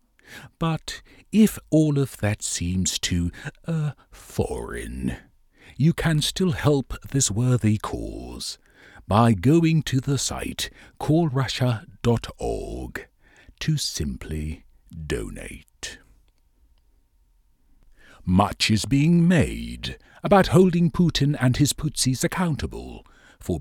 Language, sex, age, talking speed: English, male, 60-79, 95 wpm